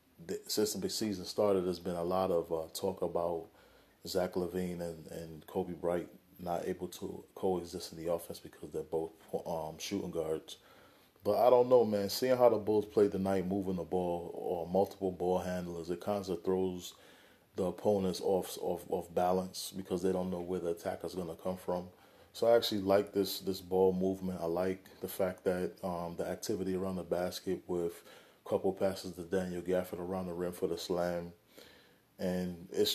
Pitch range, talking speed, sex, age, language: 90-95 Hz, 190 wpm, male, 30-49, English